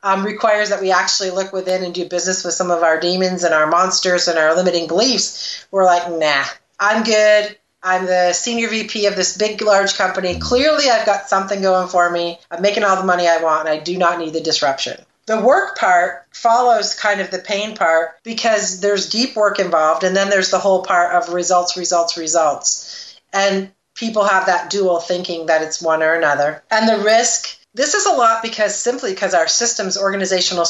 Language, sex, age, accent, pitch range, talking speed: English, female, 40-59, American, 175-205 Hz, 205 wpm